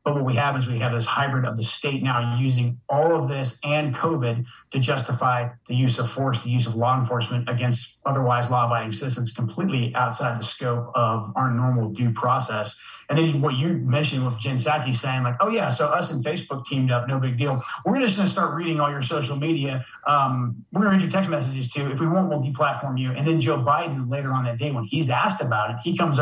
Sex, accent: male, American